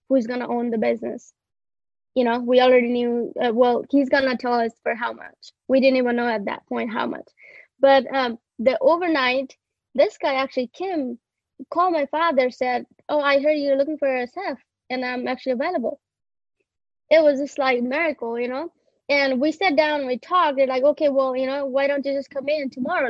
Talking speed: 210 wpm